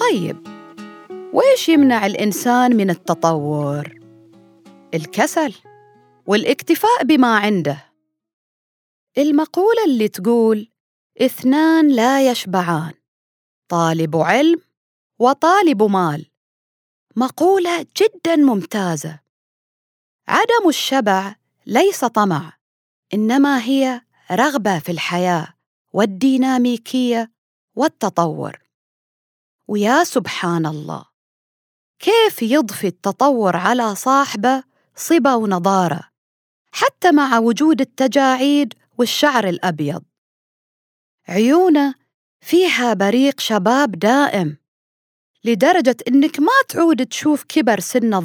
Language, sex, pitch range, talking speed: Arabic, female, 175-275 Hz, 75 wpm